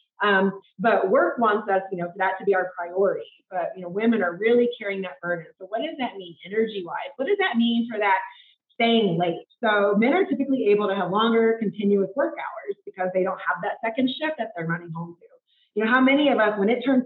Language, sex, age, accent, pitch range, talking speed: English, female, 30-49, American, 190-250 Hz, 240 wpm